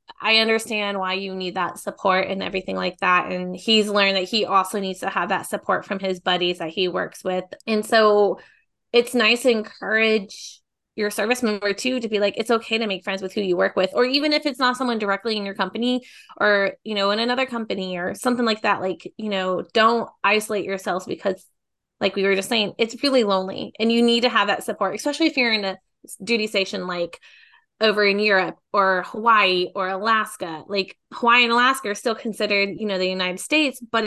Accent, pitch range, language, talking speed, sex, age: American, 190-225 Hz, English, 215 wpm, female, 20-39